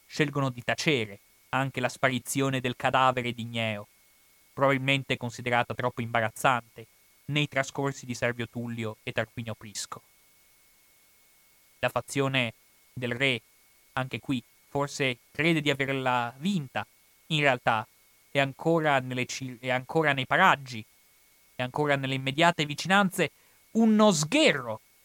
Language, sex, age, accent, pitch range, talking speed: Italian, male, 30-49, native, 120-155 Hz, 120 wpm